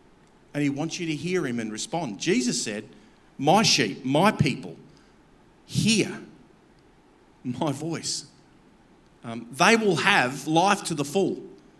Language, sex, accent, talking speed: English, male, Australian, 130 wpm